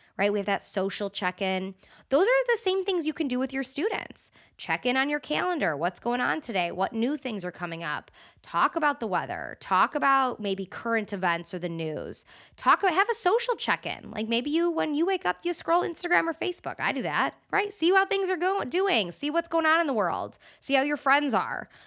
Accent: American